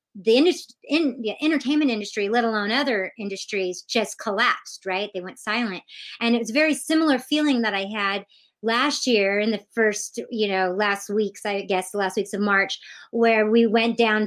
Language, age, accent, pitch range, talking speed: English, 30-49, American, 205-265 Hz, 195 wpm